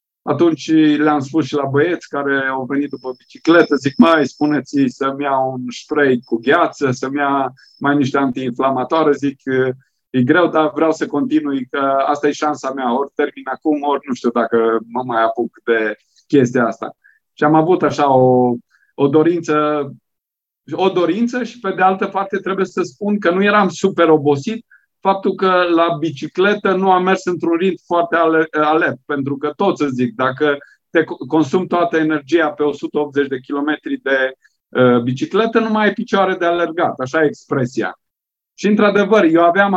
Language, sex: Romanian, male